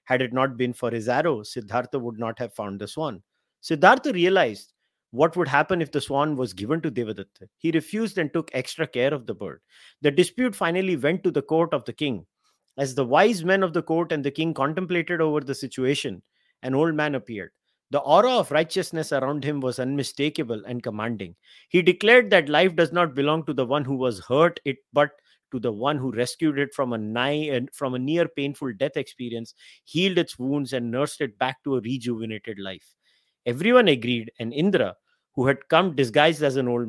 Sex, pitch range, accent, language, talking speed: male, 125-165 Hz, Indian, English, 200 wpm